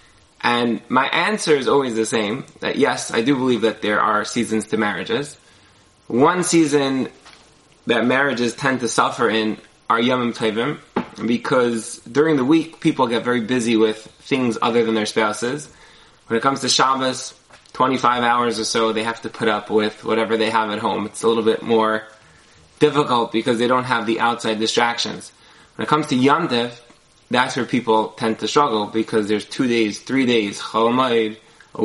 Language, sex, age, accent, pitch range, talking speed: English, male, 20-39, American, 110-135 Hz, 175 wpm